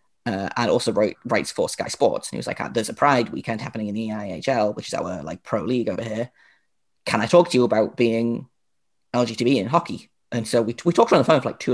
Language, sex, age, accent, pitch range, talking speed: English, male, 20-39, British, 115-125 Hz, 250 wpm